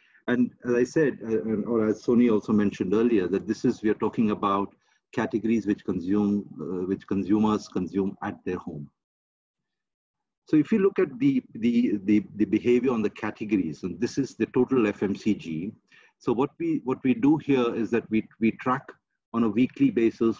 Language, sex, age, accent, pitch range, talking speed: English, male, 50-69, Indian, 100-120 Hz, 185 wpm